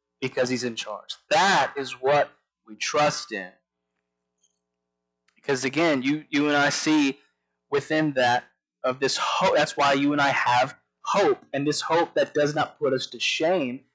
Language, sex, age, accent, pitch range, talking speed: English, male, 20-39, American, 125-160 Hz, 170 wpm